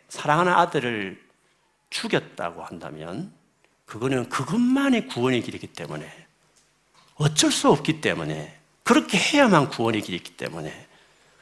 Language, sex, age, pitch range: Korean, male, 50-69, 125-200 Hz